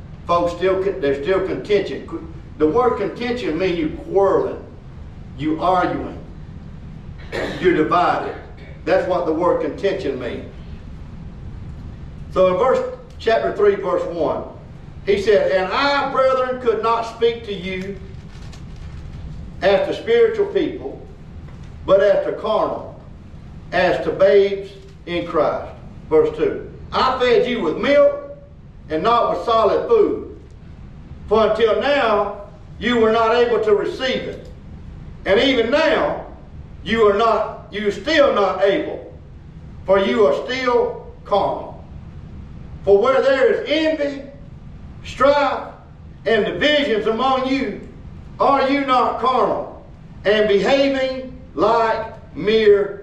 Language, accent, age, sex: English, American, 50-69, male